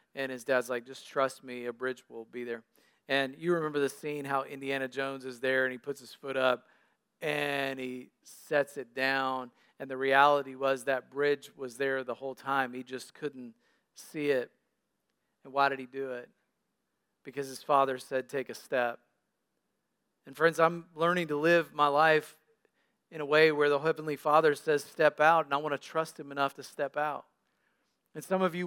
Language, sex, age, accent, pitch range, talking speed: English, male, 40-59, American, 135-165 Hz, 195 wpm